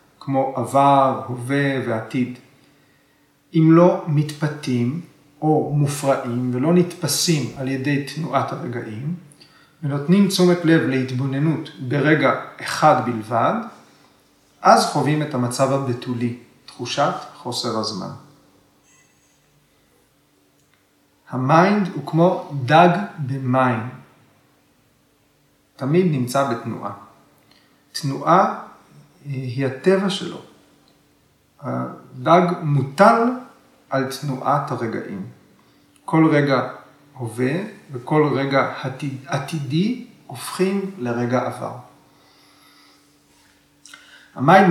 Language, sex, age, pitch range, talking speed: Hebrew, male, 40-59, 130-160 Hz, 75 wpm